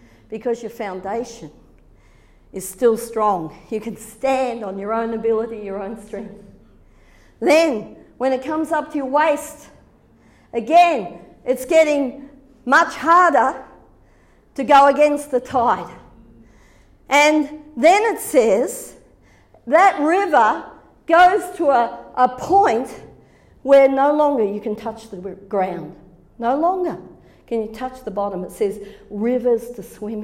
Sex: female